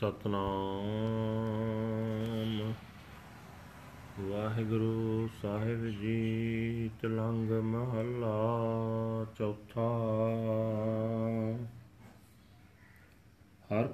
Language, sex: Punjabi, male